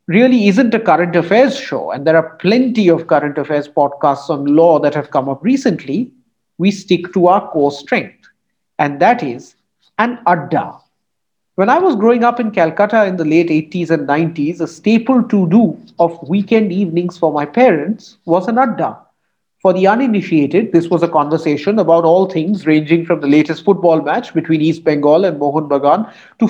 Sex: male